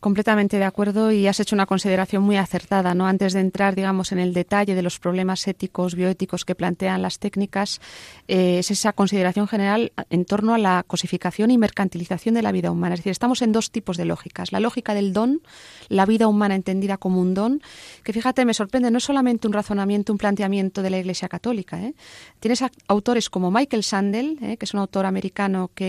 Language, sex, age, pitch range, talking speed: Spanish, female, 30-49, 185-220 Hz, 205 wpm